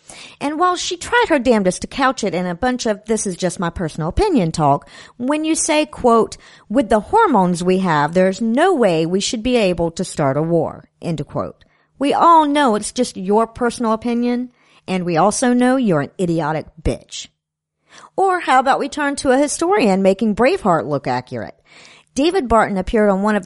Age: 50-69